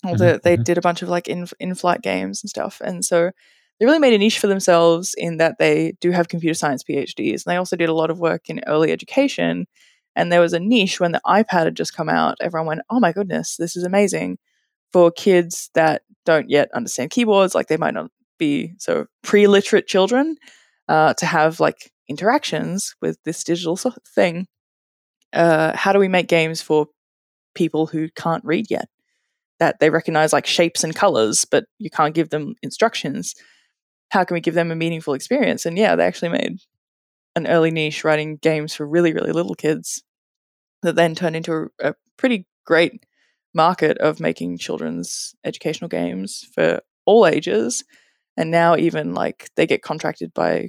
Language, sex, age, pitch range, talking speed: English, female, 20-39, 155-195 Hz, 185 wpm